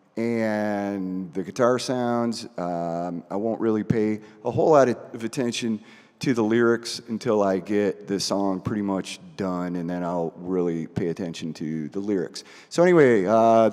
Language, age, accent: English, 40-59, American